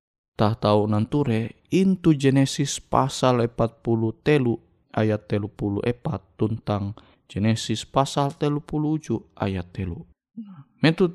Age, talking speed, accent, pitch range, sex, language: 20-39, 100 wpm, native, 110-145 Hz, male, Indonesian